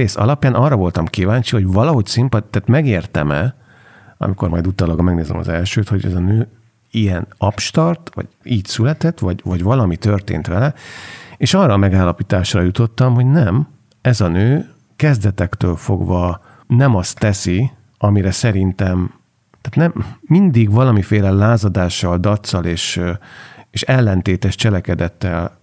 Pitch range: 90-120 Hz